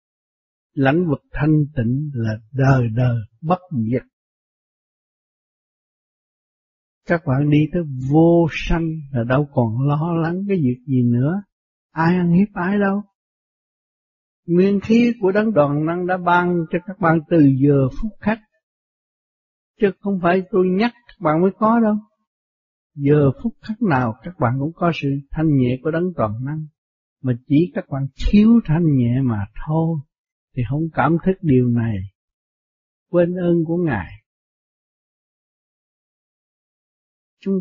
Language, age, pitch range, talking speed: Vietnamese, 60-79, 130-180 Hz, 140 wpm